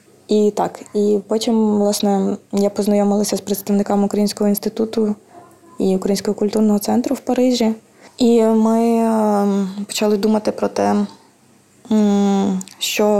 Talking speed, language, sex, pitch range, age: 110 wpm, Ukrainian, female, 195-210 Hz, 20-39